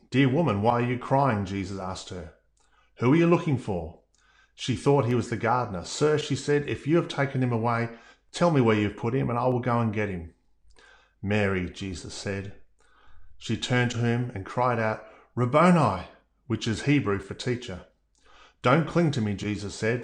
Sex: male